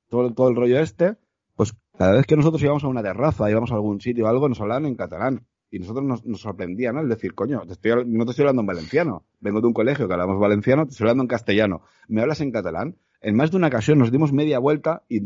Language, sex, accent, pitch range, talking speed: Spanish, male, Spanish, 110-155 Hz, 260 wpm